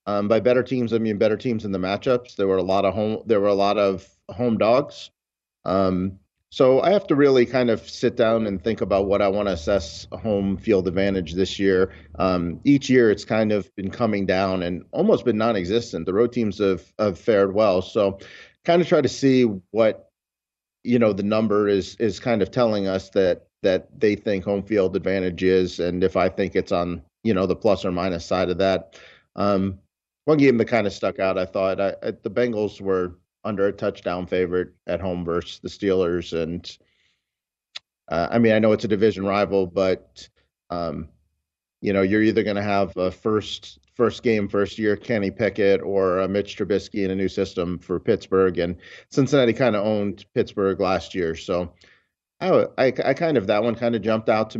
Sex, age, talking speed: male, 40-59, 205 wpm